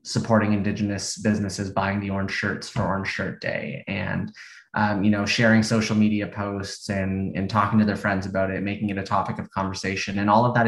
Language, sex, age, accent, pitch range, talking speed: English, male, 20-39, American, 100-110 Hz, 210 wpm